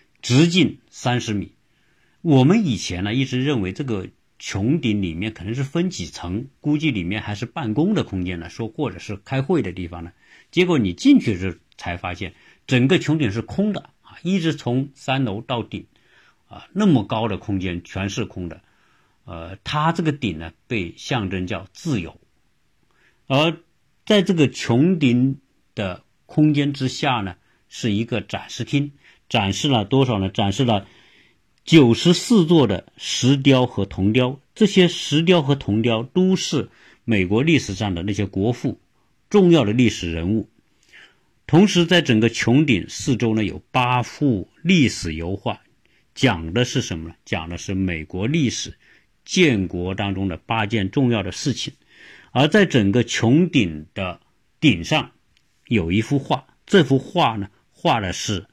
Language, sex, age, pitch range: Chinese, male, 50-69, 100-145 Hz